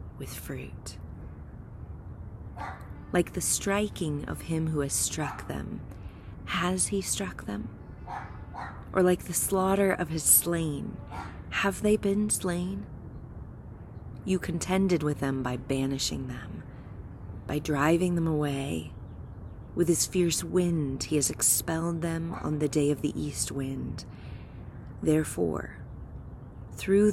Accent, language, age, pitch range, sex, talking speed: American, English, 30-49, 100-160 Hz, female, 120 wpm